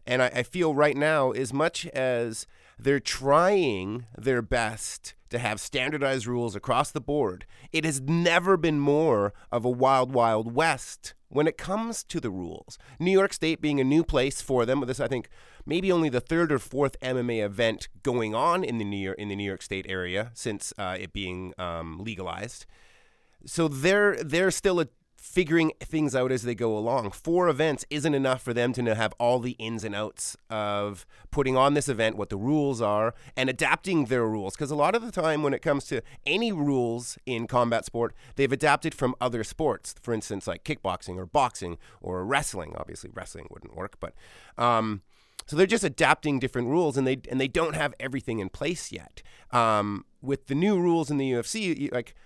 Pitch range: 110-150 Hz